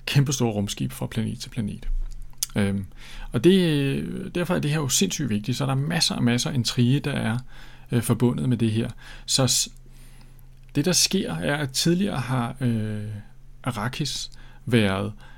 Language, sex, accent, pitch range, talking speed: Danish, male, native, 110-130 Hz, 160 wpm